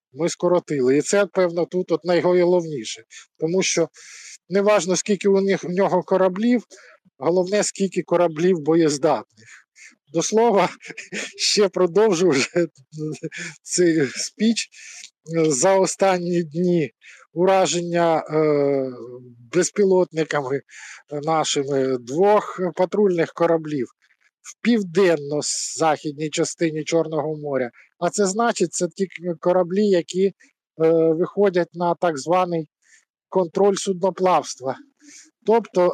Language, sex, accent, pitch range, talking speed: Ukrainian, male, native, 155-190 Hz, 95 wpm